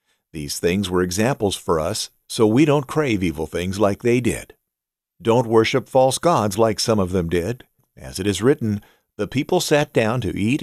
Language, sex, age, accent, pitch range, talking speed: English, male, 50-69, American, 95-125 Hz, 190 wpm